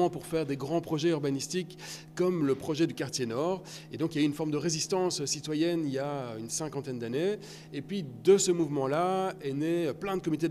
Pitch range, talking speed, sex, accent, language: 140-180 Hz, 225 wpm, male, French, French